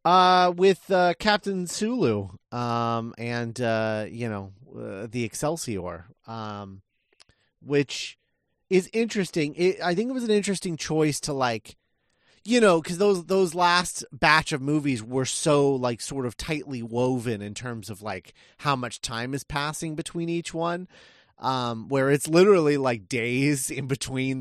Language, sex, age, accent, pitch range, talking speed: English, male, 30-49, American, 120-180 Hz, 155 wpm